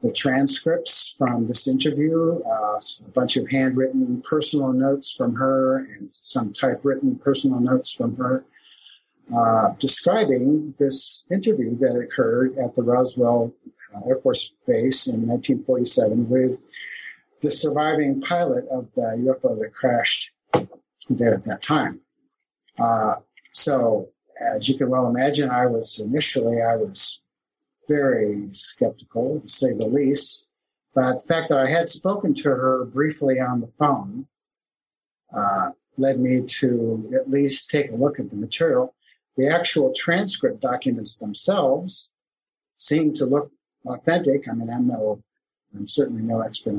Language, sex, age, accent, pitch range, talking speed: English, male, 50-69, American, 120-145 Hz, 140 wpm